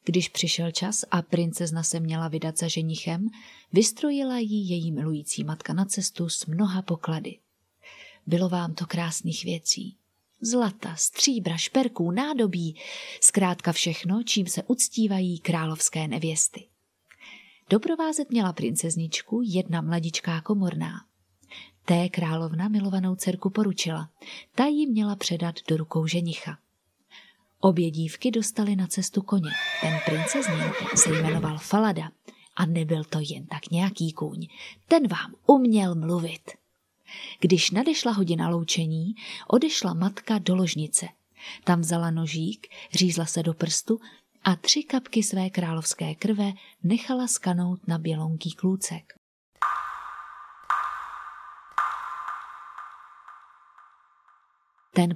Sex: female